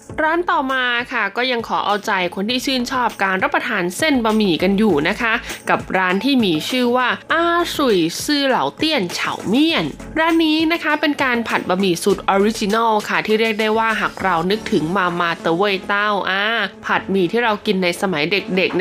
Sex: female